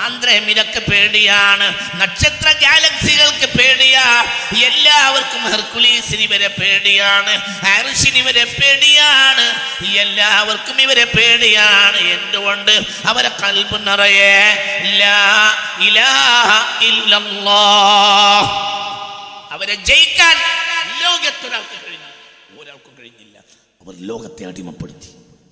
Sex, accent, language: male, native, Malayalam